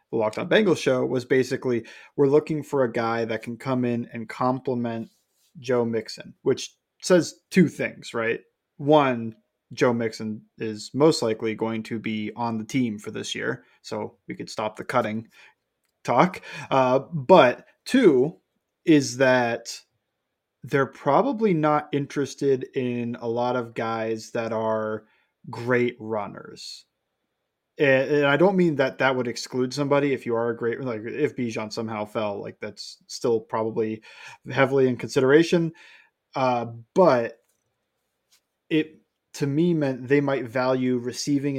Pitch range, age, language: 115-140 Hz, 20-39, English